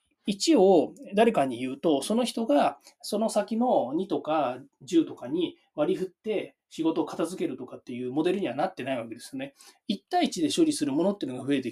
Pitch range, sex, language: 190-295 Hz, male, Japanese